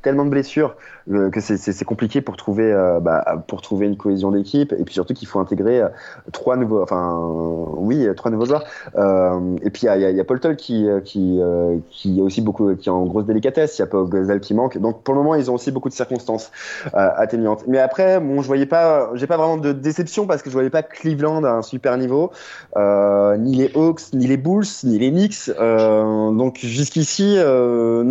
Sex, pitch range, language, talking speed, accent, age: male, 95-140 Hz, French, 230 wpm, French, 20-39